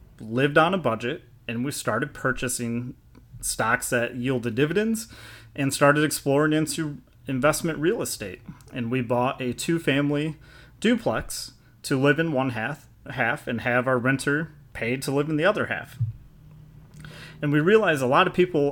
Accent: American